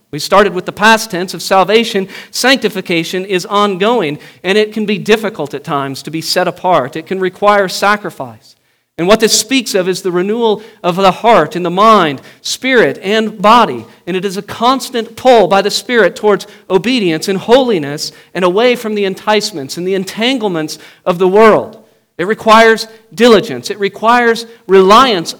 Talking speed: 170 wpm